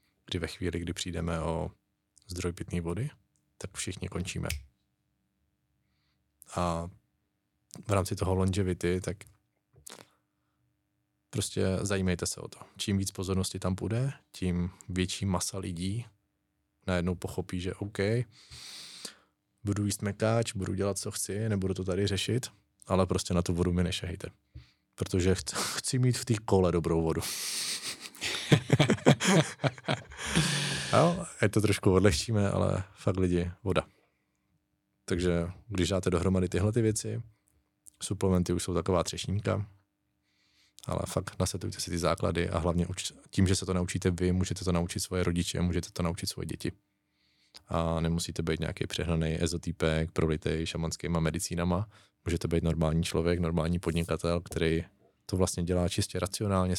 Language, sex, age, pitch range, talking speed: Czech, male, 20-39, 85-100 Hz, 135 wpm